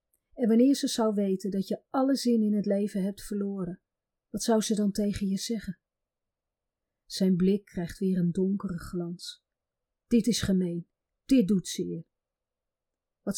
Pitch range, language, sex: 190-235 Hz, Dutch, female